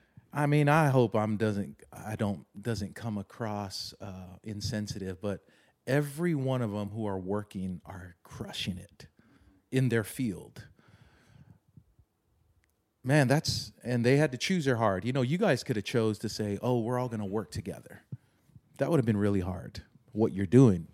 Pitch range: 100-120 Hz